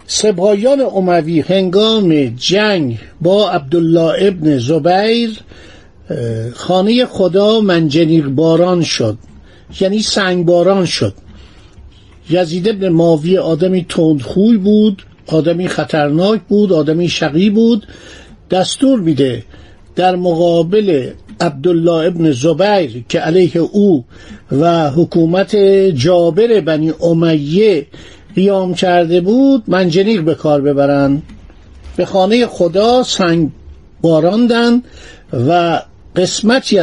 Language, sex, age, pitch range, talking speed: Persian, male, 50-69, 155-200 Hz, 95 wpm